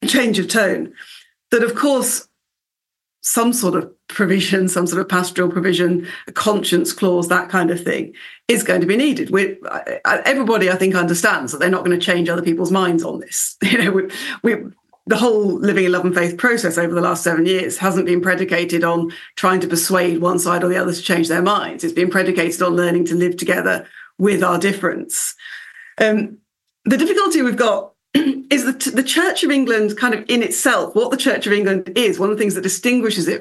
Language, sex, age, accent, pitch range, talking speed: English, female, 40-59, British, 180-225 Hz, 205 wpm